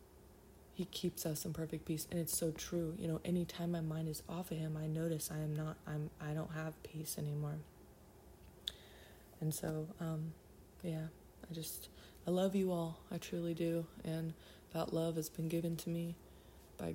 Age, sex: 20-39, female